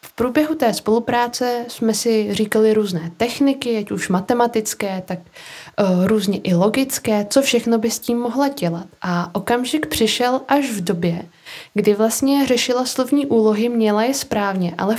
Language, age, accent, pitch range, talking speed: Czech, 20-39, native, 205-265 Hz, 150 wpm